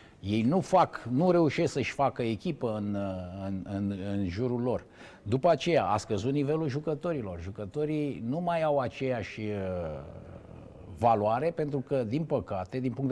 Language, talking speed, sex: Romanian, 145 wpm, male